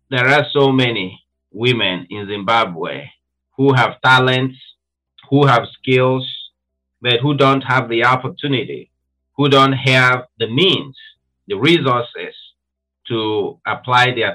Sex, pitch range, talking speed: male, 90-130 Hz, 120 wpm